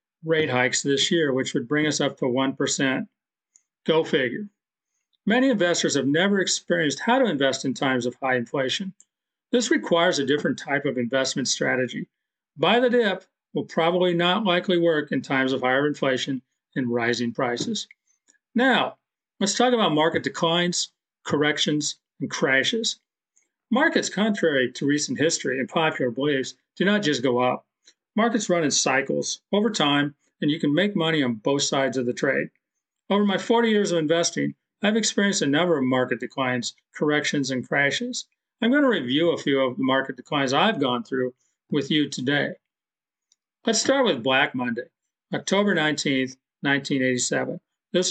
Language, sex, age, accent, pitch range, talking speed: English, male, 40-59, American, 135-190 Hz, 160 wpm